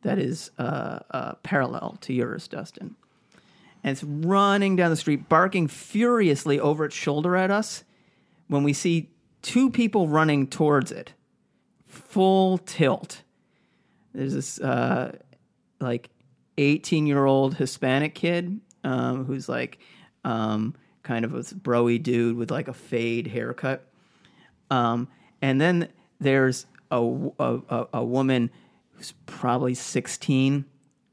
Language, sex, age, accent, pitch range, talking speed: English, male, 40-59, American, 130-175 Hz, 125 wpm